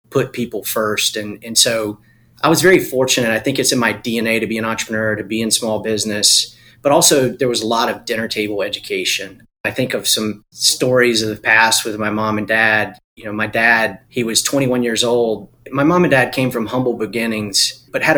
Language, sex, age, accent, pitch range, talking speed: English, male, 30-49, American, 110-125 Hz, 225 wpm